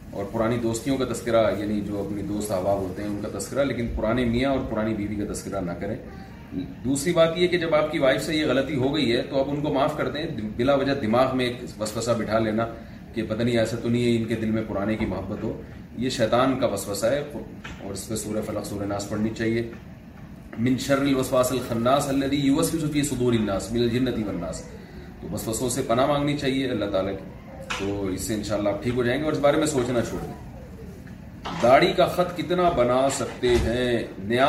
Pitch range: 110-140 Hz